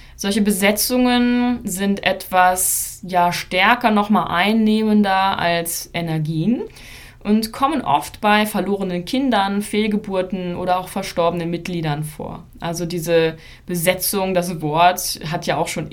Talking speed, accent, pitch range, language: 115 wpm, German, 165-205 Hz, German